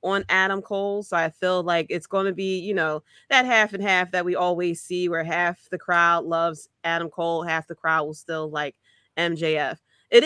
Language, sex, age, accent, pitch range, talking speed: English, female, 20-39, American, 165-200 Hz, 210 wpm